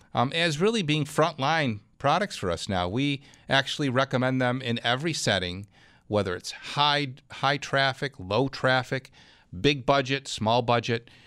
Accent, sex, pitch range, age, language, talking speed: American, male, 105-140 Hz, 40-59, English, 145 wpm